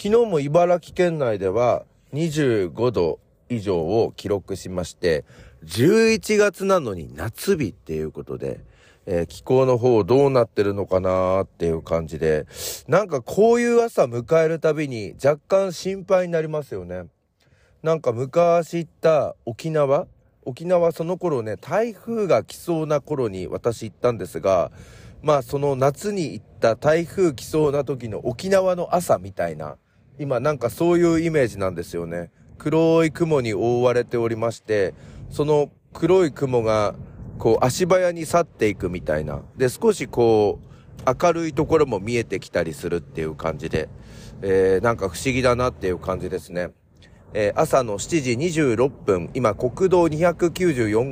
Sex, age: male, 40-59